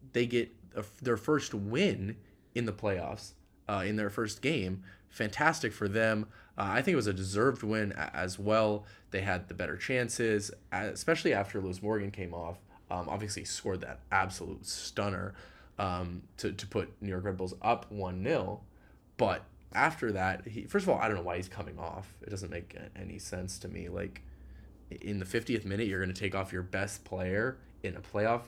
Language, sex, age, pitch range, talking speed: English, male, 20-39, 95-105 Hz, 190 wpm